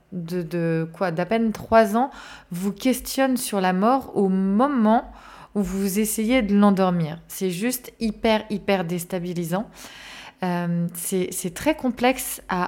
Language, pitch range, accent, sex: French, 185-230 Hz, French, female